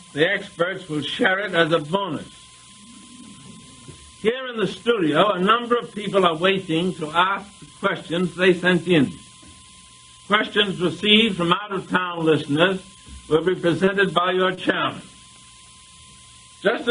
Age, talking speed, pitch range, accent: 60-79, 140 wpm, 155-210 Hz, American